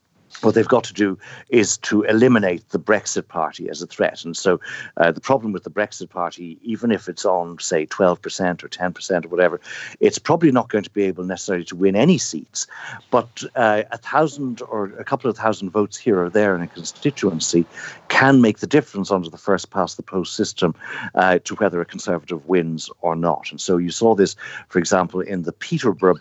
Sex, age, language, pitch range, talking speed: male, 60-79, English, 90-115 Hz, 205 wpm